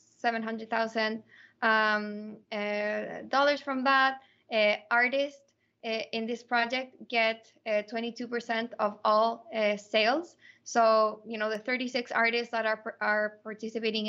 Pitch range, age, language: 215-240 Hz, 20-39, English